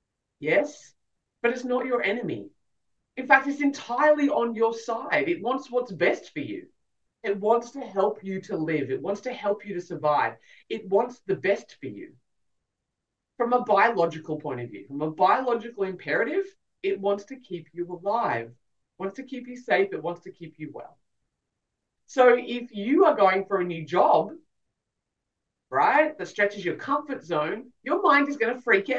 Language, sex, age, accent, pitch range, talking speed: English, female, 40-59, Australian, 180-250 Hz, 180 wpm